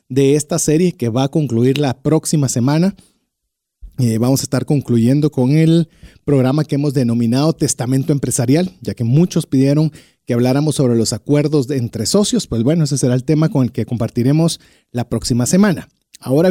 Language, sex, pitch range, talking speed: Spanish, male, 125-160 Hz, 180 wpm